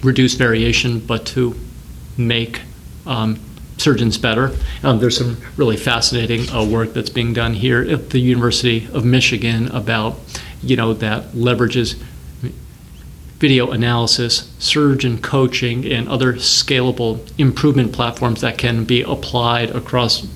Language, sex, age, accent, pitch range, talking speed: English, male, 40-59, American, 115-125 Hz, 125 wpm